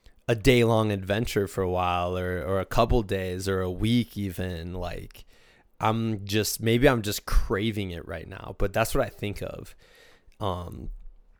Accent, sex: American, male